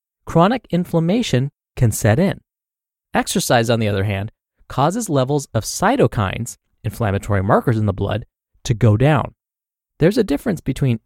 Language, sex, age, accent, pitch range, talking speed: English, male, 30-49, American, 110-155 Hz, 140 wpm